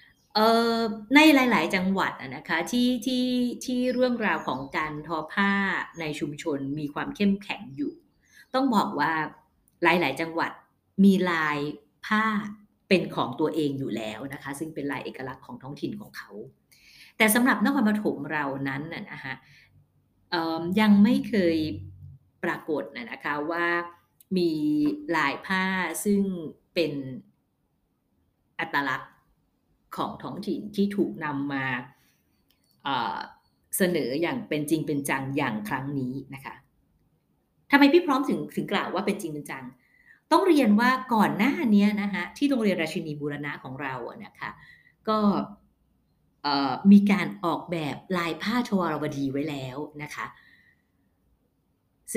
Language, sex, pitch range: Thai, female, 150-215 Hz